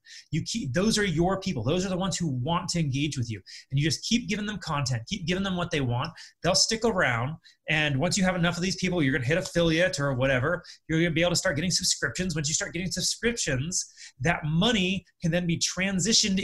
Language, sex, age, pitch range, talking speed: English, male, 30-49, 140-185 Hz, 245 wpm